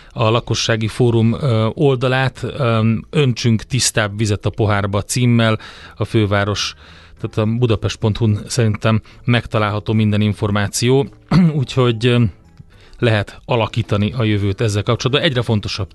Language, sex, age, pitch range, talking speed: Hungarian, male, 30-49, 105-125 Hz, 105 wpm